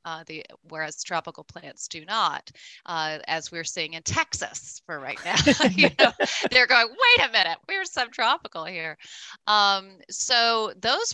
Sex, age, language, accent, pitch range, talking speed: female, 30-49, English, American, 160-195 Hz, 155 wpm